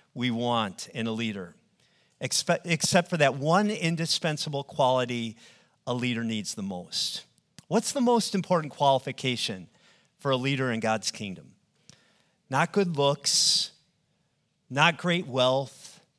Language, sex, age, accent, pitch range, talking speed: English, male, 40-59, American, 135-180 Hz, 120 wpm